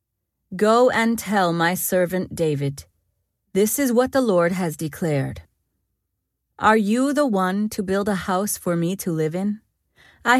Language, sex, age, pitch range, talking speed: English, female, 30-49, 150-215 Hz, 155 wpm